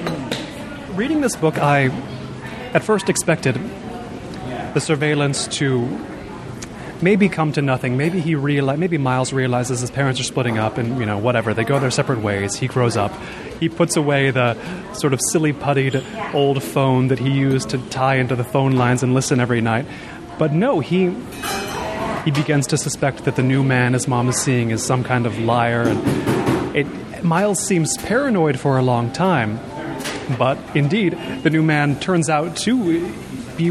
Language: English